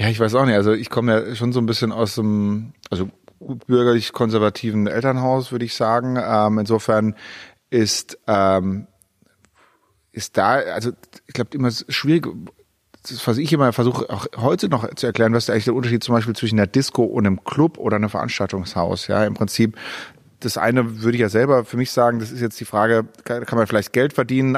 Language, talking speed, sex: German, 195 wpm, male